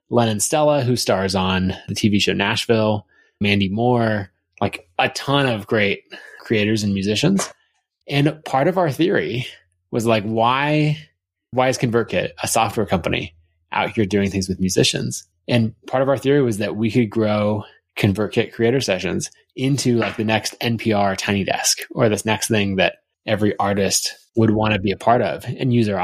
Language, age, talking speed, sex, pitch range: English, 20-39, 175 wpm, male, 100-130 Hz